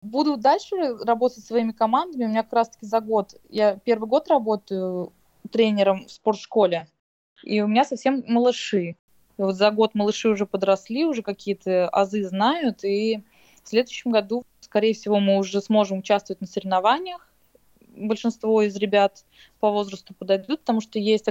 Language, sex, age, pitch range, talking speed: English, female, 20-39, 195-235 Hz, 160 wpm